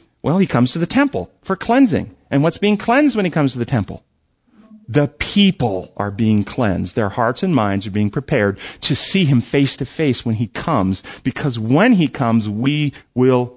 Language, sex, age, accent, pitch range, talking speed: English, male, 40-59, American, 120-185 Hz, 200 wpm